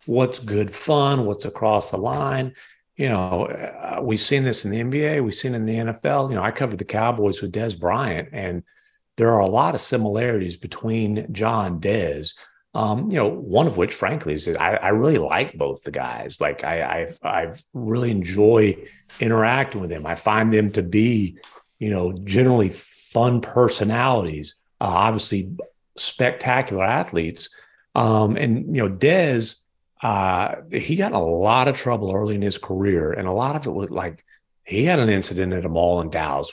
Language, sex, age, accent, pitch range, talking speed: English, male, 40-59, American, 95-130 Hz, 185 wpm